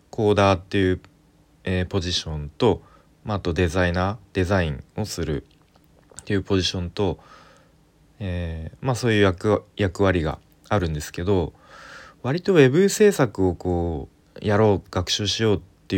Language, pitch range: Japanese, 90-115 Hz